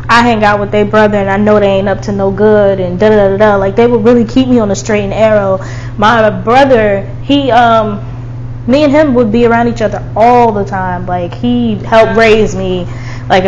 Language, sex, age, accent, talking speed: English, female, 10-29, American, 235 wpm